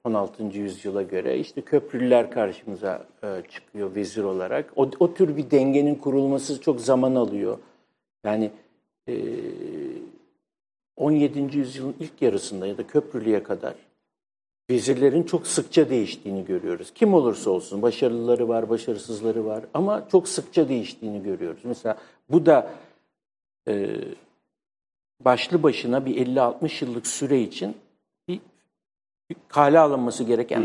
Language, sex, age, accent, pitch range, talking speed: English, male, 60-79, Turkish, 115-165 Hz, 110 wpm